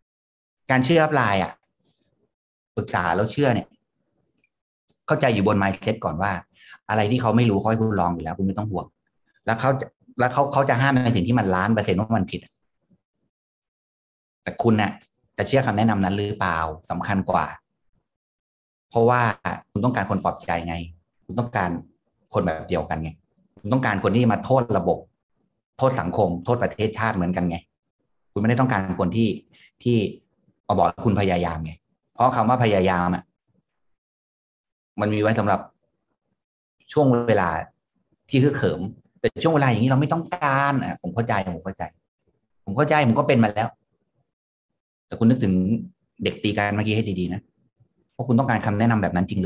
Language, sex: Thai, male